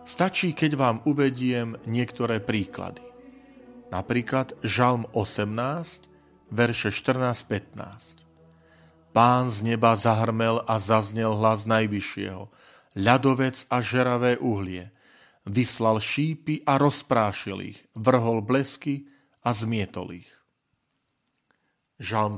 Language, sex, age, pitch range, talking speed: Slovak, male, 40-59, 110-135 Hz, 90 wpm